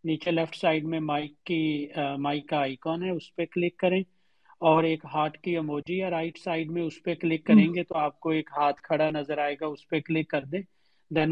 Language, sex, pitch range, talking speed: Urdu, male, 145-170 Hz, 205 wpm